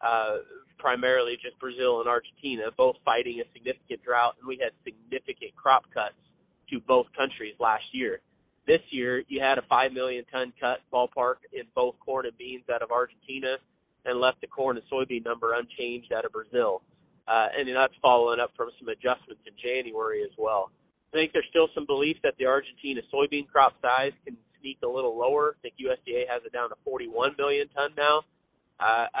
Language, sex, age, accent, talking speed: English, male, 30-49, American, 190 wpm